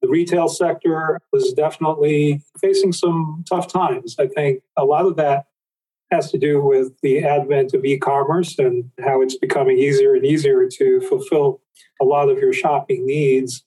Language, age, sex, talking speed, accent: English, 40-59, male, 165 wpm, American